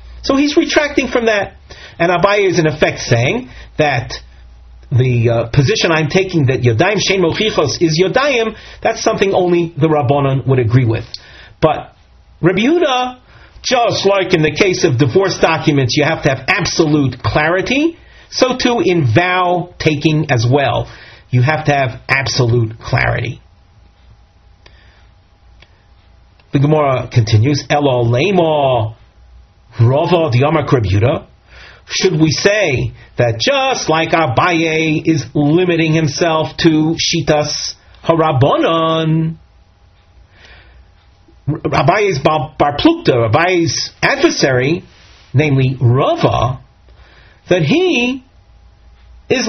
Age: 40-59